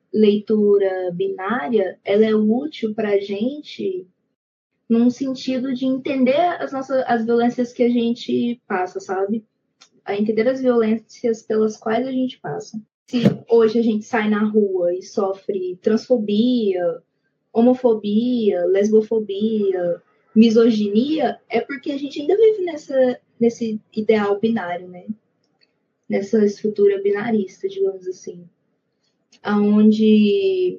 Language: Portuguese